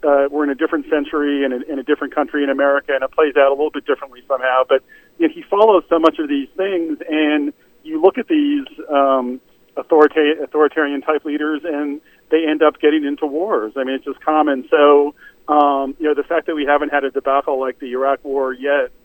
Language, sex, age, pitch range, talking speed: English, male, 40-59, 135-155 Hz, 215 wpm